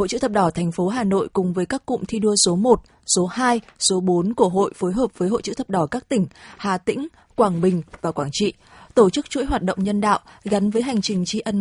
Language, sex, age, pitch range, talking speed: Vietnamese, female, 20-39, 185-230 Hz, 265 wpm